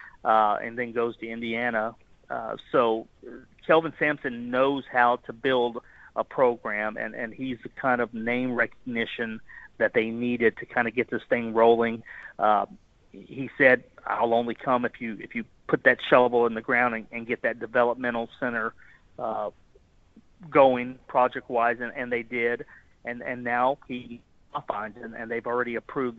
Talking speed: 165 wpm